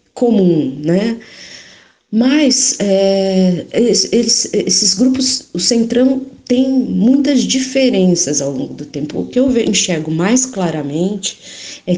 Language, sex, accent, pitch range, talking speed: Portuguese, female, Brazilian, 165-245 Hz, 105 wpm